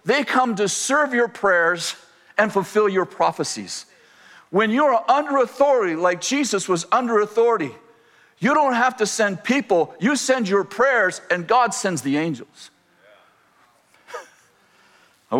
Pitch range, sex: 130-210 Hz, male